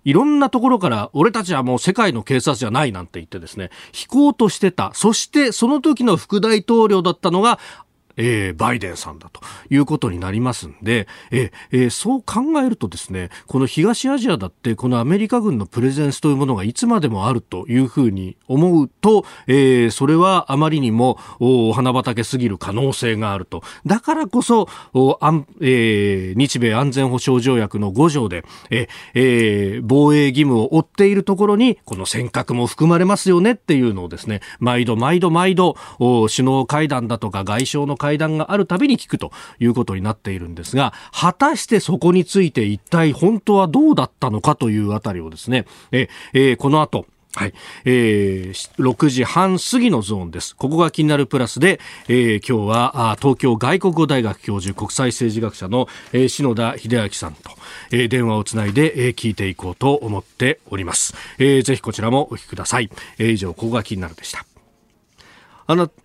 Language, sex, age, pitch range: Japanese, male, 40-59, 110-165 Hz